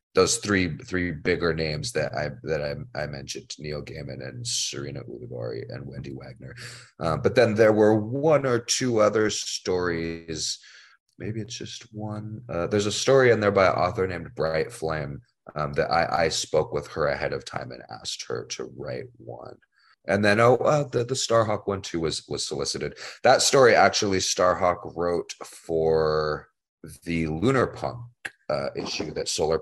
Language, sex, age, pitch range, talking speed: English, male, 30-49, 80-120 Hz, 175 wpm